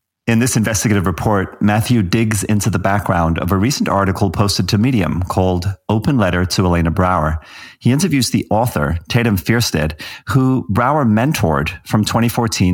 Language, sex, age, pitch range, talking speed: English, male, 40-59, 90-120 Hz, 155 wpm